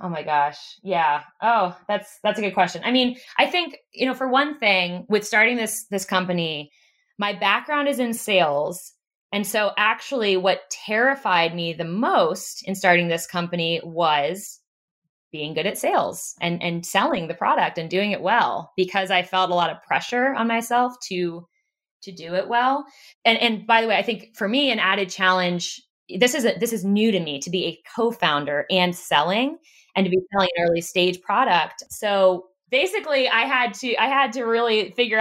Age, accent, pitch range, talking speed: 20-39, American, 175-225 Hz, 195 wpm